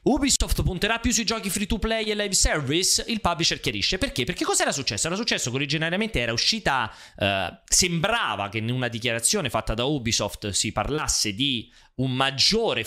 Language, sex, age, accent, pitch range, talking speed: Italian, male, 30-49, native, 115-170 Hz, 175 wpm